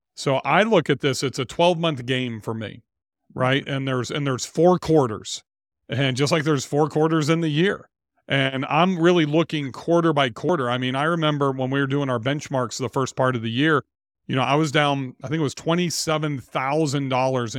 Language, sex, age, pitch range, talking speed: English, male, 40-59, 130-155 Hz, 210 wpm